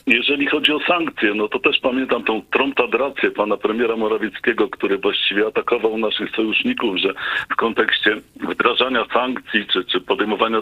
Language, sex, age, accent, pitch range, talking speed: Polish, male, 50-69, native, 120-145 Hz, 145 wpm